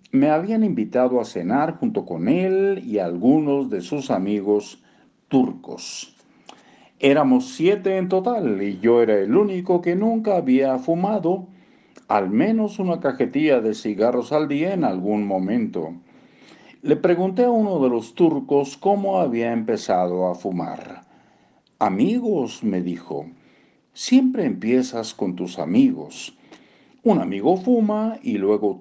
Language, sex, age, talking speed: Spanish, male, 50-69, 130 wpm